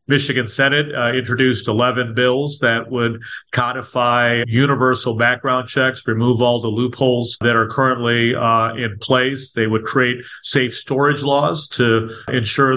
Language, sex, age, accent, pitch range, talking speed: English, male, 40-59, American, 120-135 Hz, 140 wpm